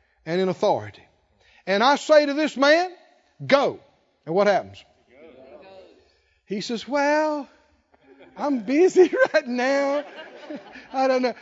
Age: 50-69